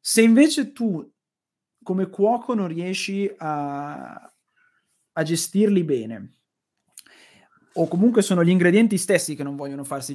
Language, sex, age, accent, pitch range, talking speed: Italian, male, 30-49, native, 150-205 Hz, 125 wpm